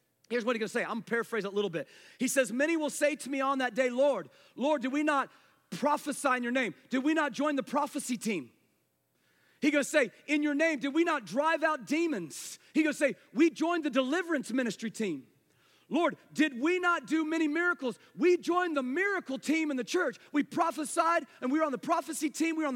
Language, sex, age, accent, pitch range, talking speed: English, male, 40-59, American, 200-300 Hz, 235 wpm